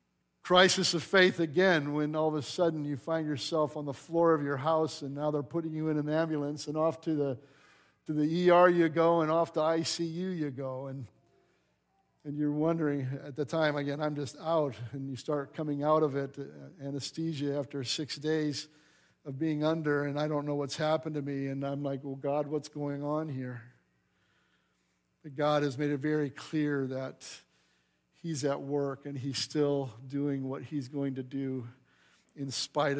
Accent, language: American, English